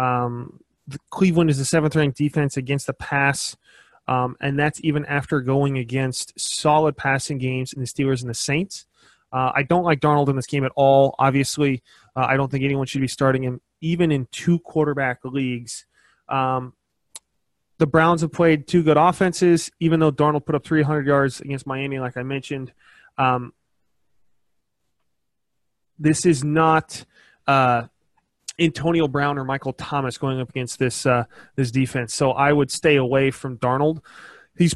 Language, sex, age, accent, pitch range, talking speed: English, male, 20-39, American, 130-155 Hz, 165 wpm